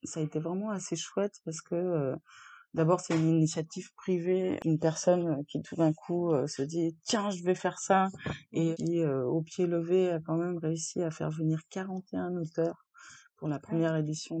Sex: female